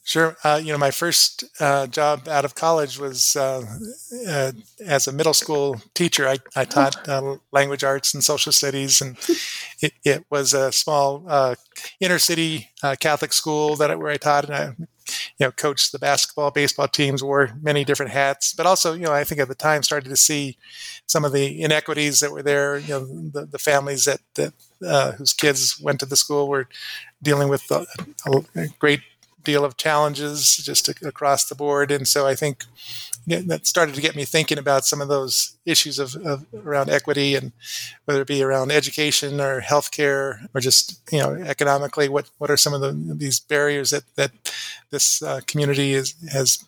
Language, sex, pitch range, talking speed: English, male, 135-150 Hz, 195 wpm